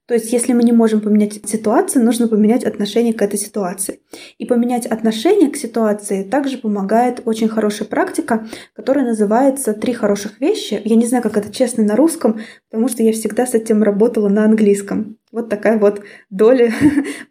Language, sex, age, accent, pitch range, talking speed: Russian, female, 20-39, native, 215-250 Hz, 175 wpm